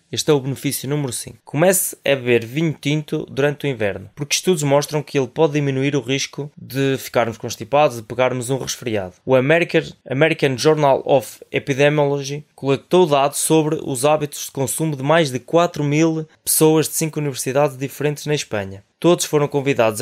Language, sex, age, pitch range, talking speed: Portuguese, male, 20-39, 130-150 Hz, 175 wpm